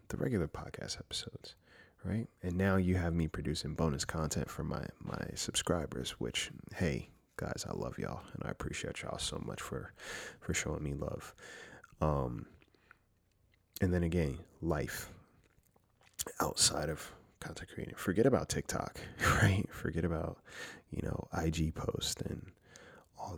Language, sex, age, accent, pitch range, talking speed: English, male, 30-49, American, 80-105 Hz, 140 wpm